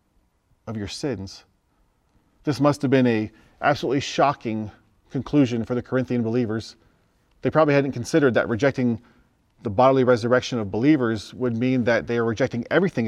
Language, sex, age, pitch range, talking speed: English, male, 30-49, 100-125 Hz, 150 wpm